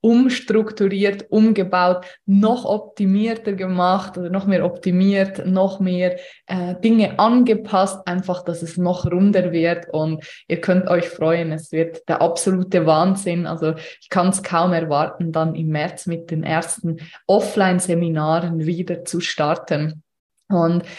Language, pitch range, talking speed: German, 170-190 Hz, 135 wpm